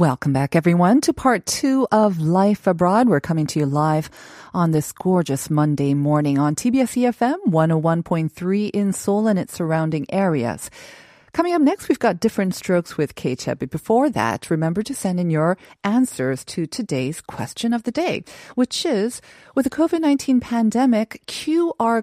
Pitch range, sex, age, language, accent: 150-220 Hz, female, 40-59, Korean, American